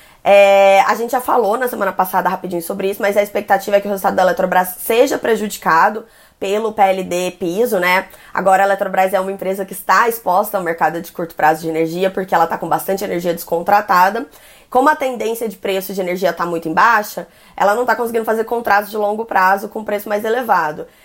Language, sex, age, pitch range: Portuguese, female, 20-39, 180-215 Hz